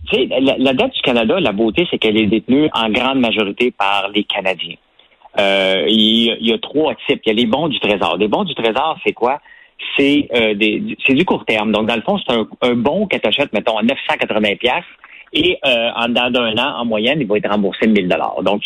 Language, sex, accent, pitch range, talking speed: French, male, French, 105-125 Hz, 240 wpm